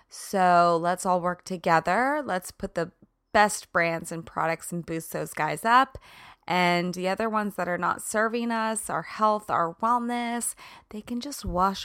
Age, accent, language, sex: 20-39, American, English, female